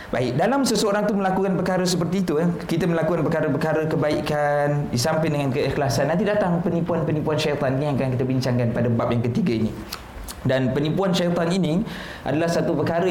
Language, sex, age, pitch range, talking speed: Malay, male, 20-39, 130-170 Hz, 170 wpm